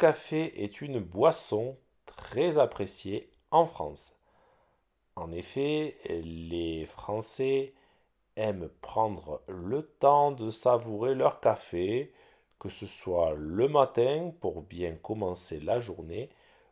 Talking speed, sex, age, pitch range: 110 wpm, male, 50-69, 90-140 Hz